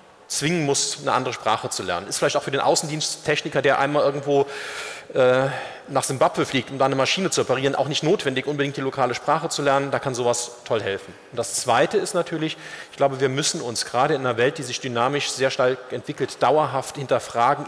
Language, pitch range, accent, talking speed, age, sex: German, 130-155 Hz, German, 210 wpm, 40-59, male